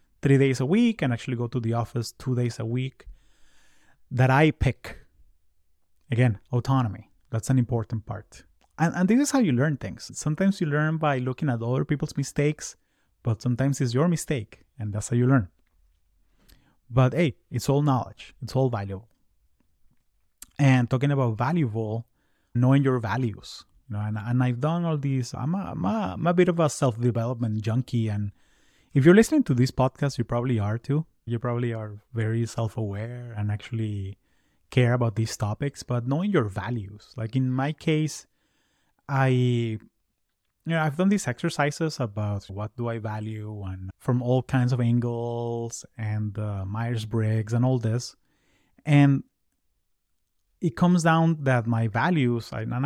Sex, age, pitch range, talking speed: male, 30-49, 110-140 Hz, 165 wpm